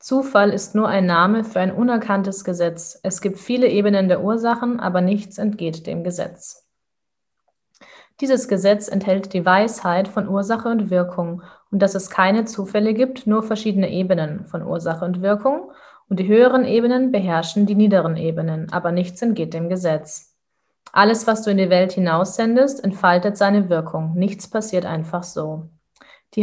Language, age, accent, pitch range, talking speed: German, 20-39, German, 180-220 Hz, 160 wpm